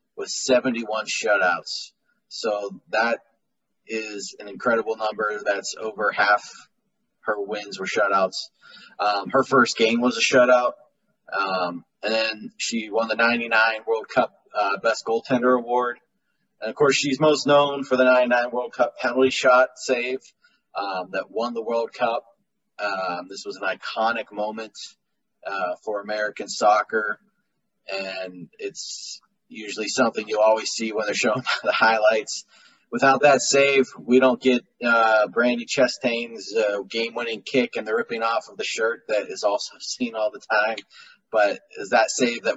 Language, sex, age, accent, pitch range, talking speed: English, male, 30-49, American, 110-135 Hz, 155 wpm